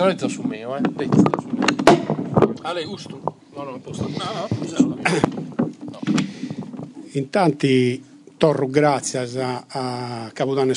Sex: male